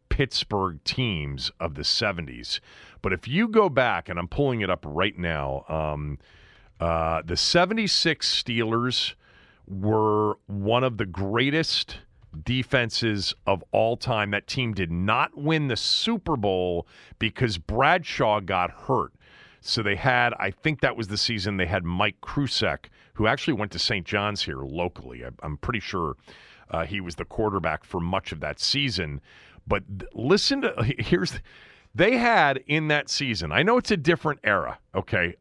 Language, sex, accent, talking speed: English, male, American, 160 wpm